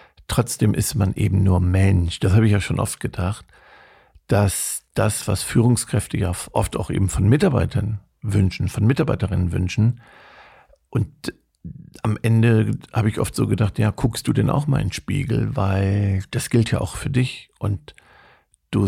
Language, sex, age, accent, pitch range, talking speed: German, male, 50-69, German, 100-130 Hz, 170 wpm